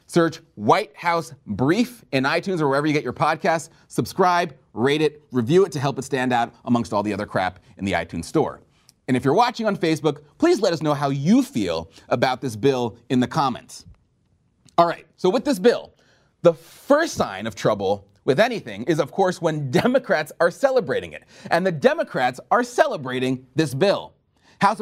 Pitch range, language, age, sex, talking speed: 140-200 Hz, English, 30-49, male, 190 wpm